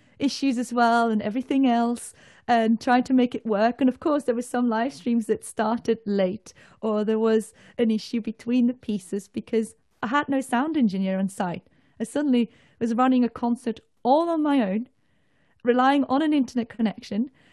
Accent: British